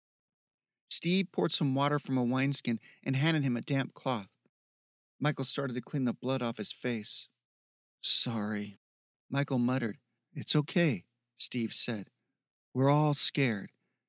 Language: English